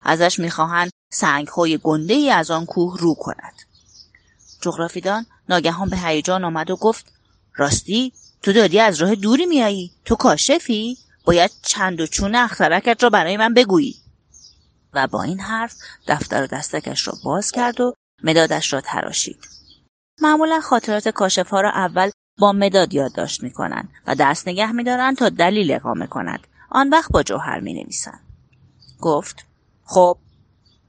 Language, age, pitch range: Persian, 30-49, 175-245 Hz